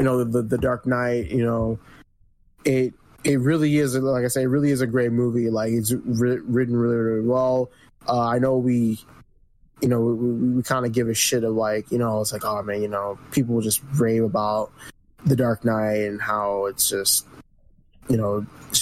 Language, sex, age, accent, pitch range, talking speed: English, male, 20-39, American, 110-130 Hz, 205 wpm